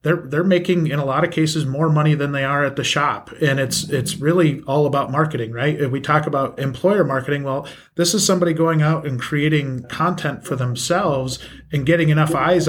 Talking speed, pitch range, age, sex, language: 215 wpm, 135-160 Hz, 30-49, male, English